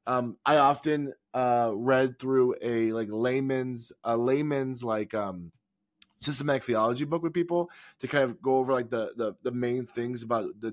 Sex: male